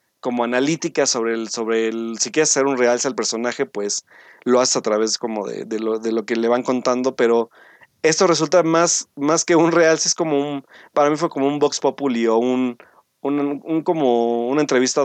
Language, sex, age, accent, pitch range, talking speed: Spanish, male, 30-49, Mexican, 120-150 Hz, 215 wpm